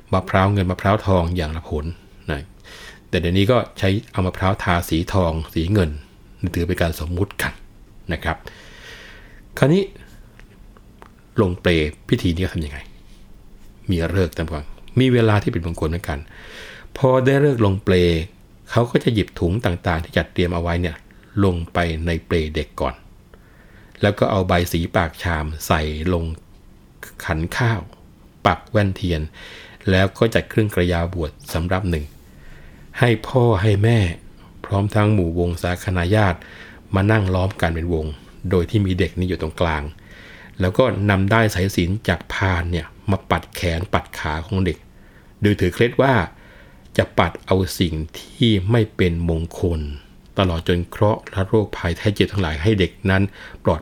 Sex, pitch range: male, 85-105 Hz